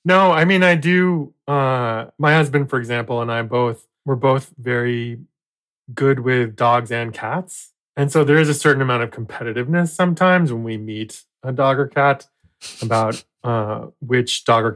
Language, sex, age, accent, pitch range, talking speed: English, male, 20-39, American, 115-140 Hz, 175 wpm